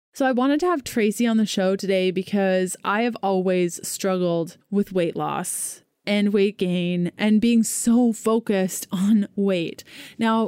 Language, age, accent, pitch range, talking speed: English, 20-39, American, 195-240 Hz, 160 wpm